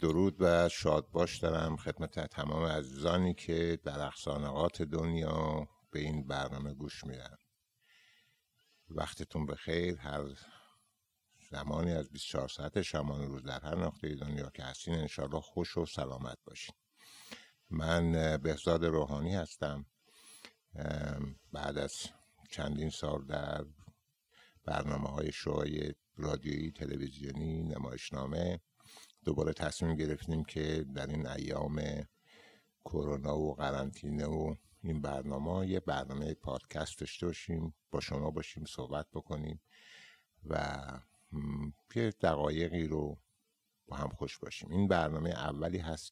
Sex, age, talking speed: male, 60-79, 115 wpm